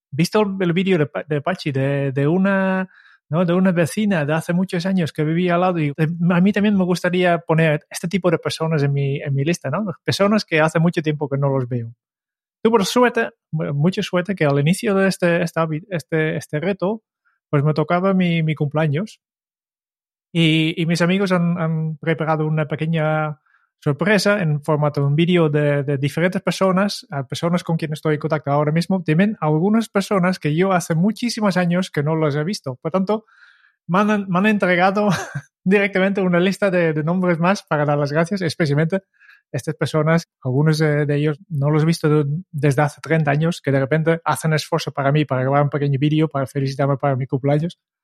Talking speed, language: 195 wpm, Spanish